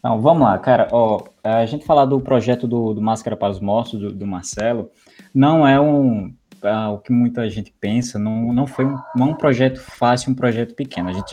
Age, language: 20-39, Portuguese